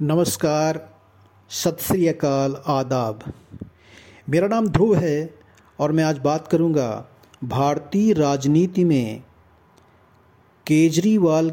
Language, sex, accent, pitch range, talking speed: Hindi, male, native, 125-170 Hz, 85 wpm